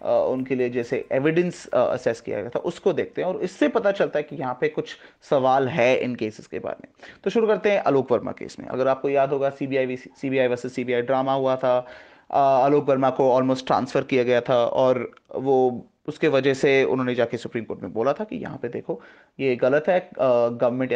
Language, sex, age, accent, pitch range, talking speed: Hindi, male, 30-49, native, 130-185 Hz, 215 wpm